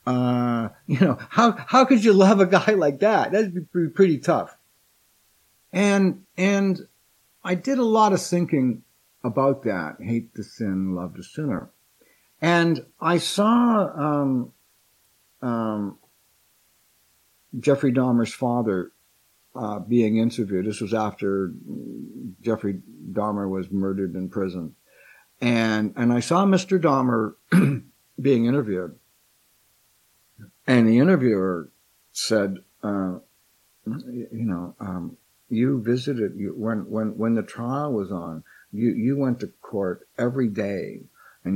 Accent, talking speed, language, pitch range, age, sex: American, 125 wpm, English, 95-140 Hz, 60-79, male